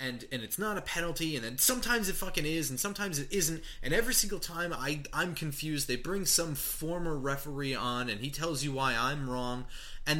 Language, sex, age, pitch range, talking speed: English, male, 30-49, 125-170 Hz, 220 wpm